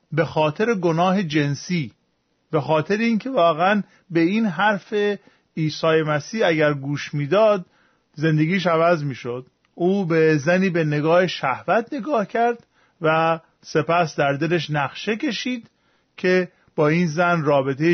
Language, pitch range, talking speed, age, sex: Persian, 150-195 Hz, 125 wpm, 40-59, male